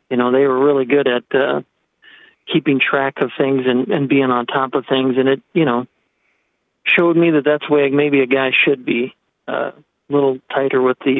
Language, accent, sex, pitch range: English, American, male, 130-150 Hz